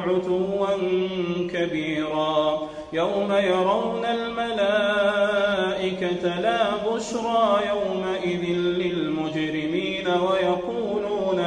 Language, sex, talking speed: Arabic, male, 50 wpm